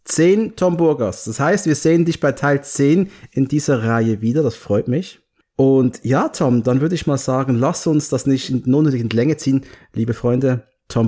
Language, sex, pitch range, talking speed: German, male, 115-150 Hz, 200 wpm